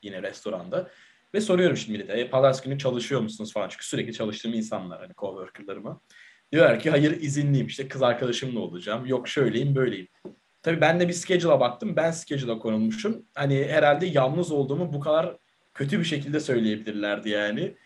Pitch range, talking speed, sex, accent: 115-155 Hz, 160 wpm, male, native